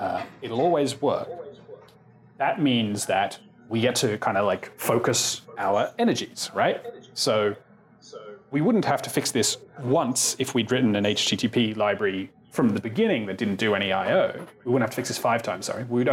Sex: male